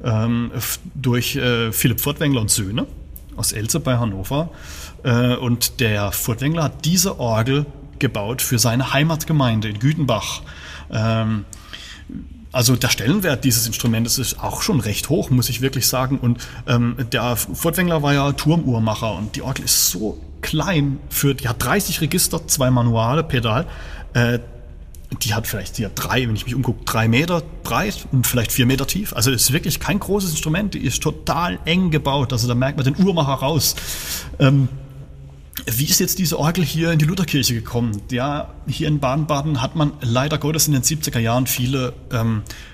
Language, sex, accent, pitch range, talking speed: German, male, German, 115-145 Hz, 160 wpm